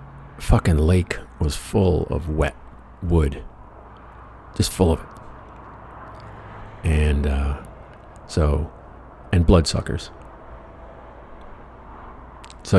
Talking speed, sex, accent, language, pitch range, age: 85 wpm, male, American, English, 75-95 Hz, 50-69